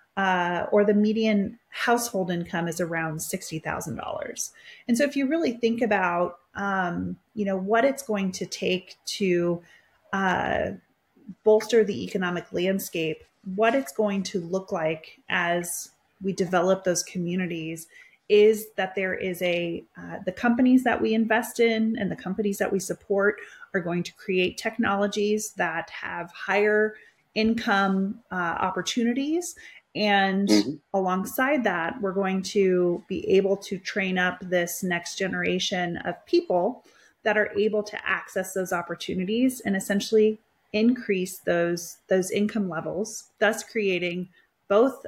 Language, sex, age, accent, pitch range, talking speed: English, female, 30-49, American, 180-215 Hz, 140 wpm